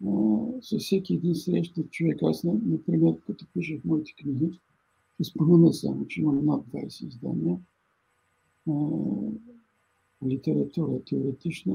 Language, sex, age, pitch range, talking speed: Bulgarian, male, 60-79, 140-175 Hz, 115 wpm